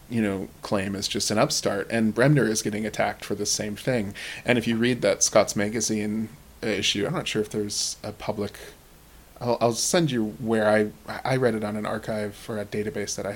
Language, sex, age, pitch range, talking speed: English, male, 20-39, 105-115 Hz, 215 wpm